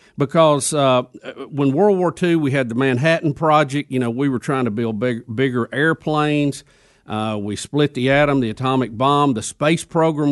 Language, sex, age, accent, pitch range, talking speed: English, male, 50-69, American, 130-170 Hz, 180 wpm